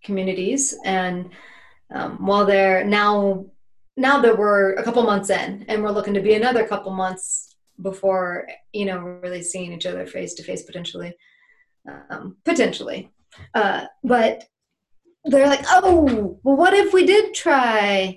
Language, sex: English, female